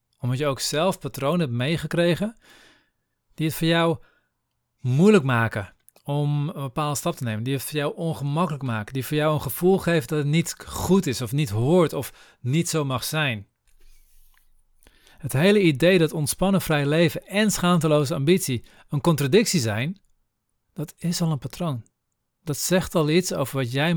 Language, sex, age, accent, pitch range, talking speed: Dutch, male, 40-59, Dutch, 130-170 Hz, 175 wpm